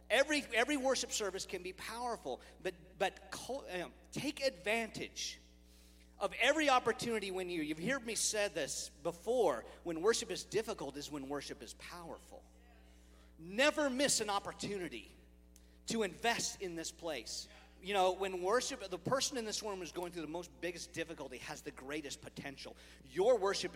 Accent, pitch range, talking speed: American, 150-240 Hz, 160 wpm